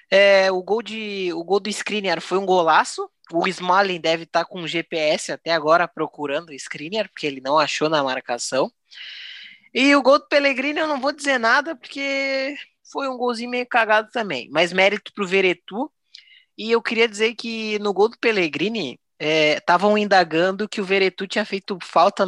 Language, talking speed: Portuguese, 185 wpm